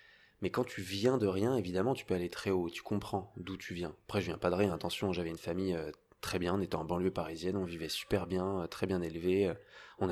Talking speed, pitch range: 250 wpm, 90-115 Hz